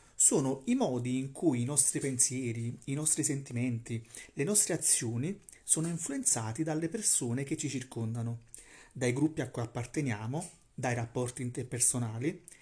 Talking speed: 140 wpm